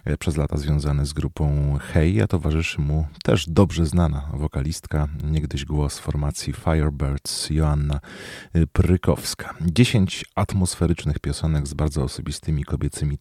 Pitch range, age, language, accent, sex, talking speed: 70-85 Hz, 40-59, Polish, native, male, 125 wpm